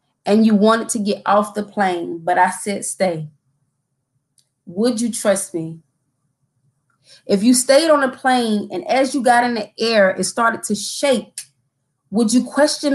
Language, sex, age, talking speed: English, female, 20-39, 165 wpm